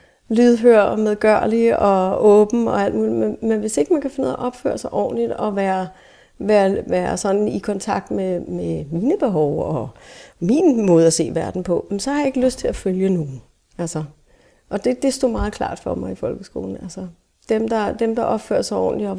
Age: 40-59